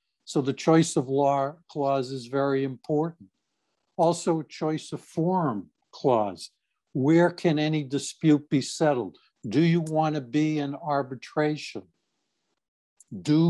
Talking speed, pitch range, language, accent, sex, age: 125 wpm, 135-155 Hz, English, American, male, 60-79